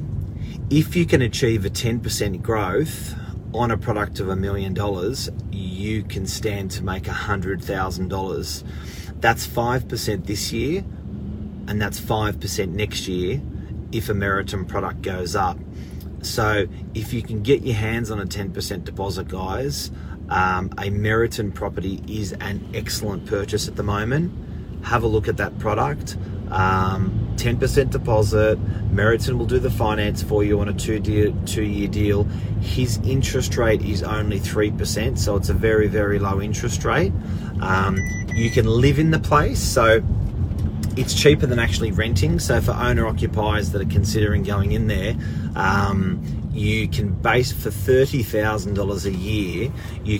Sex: male